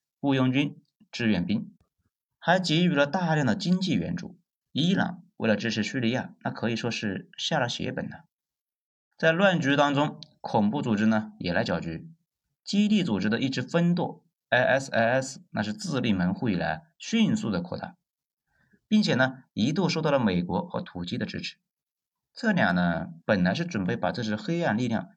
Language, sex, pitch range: Chinese, male, 120-180 Hz